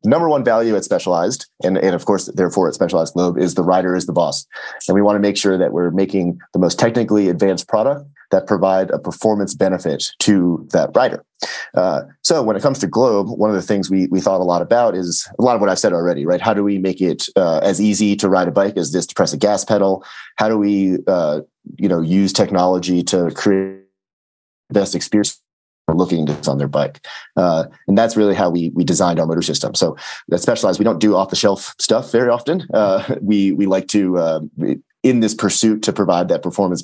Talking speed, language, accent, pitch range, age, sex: 230 wpm, English, American, 85-105 Hz, 30-49, male